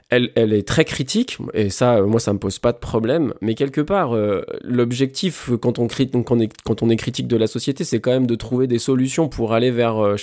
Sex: male